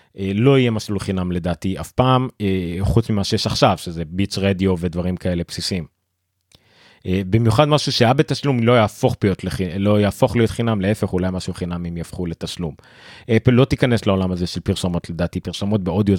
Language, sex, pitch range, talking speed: Hebrew, male, 95-120 Hz, 165 wpm